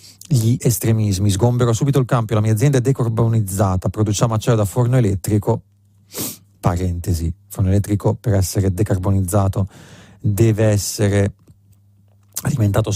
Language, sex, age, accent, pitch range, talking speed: Italian, male, 40-59, native, 100-125 Hz, 115 wpm